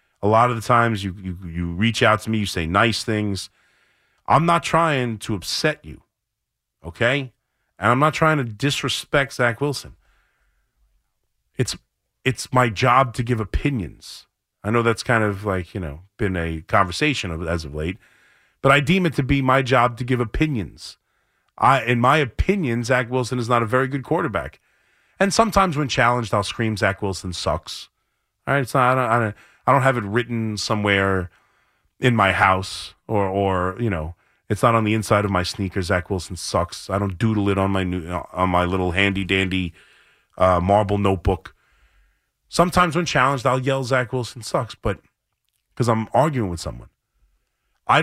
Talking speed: 185 wpm